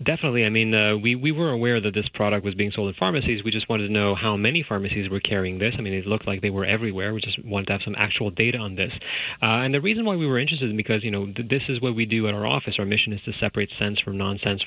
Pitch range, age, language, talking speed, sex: 105-125 Hz, 30-49, English, 300 wpm, male